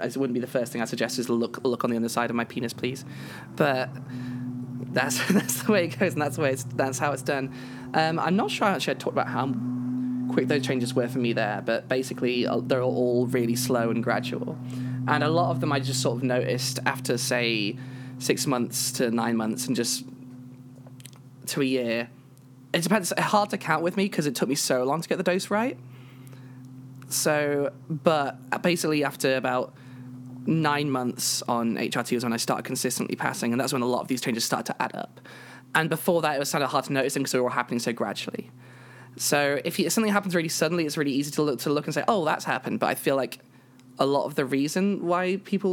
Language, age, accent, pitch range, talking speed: English, 20-39, British, 125-150 Hz, 235 wpm